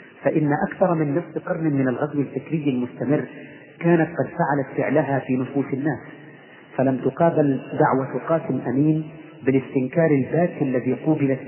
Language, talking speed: Arabic, 130 wpm